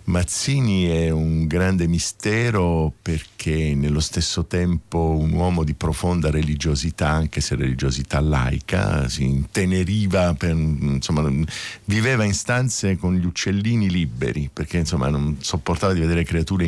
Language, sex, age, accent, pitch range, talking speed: Italian, male, 50-69, native, 75-95 Hz, 130 wpm